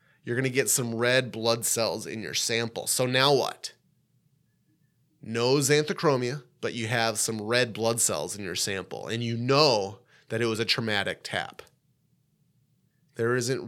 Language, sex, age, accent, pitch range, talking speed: English, male, 30-49, American, 115-145 Hz, 160 wpm